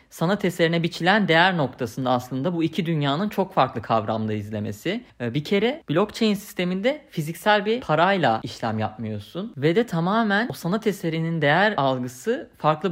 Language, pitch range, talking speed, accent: Turkish, 135-195 Hz, 145 wpm, native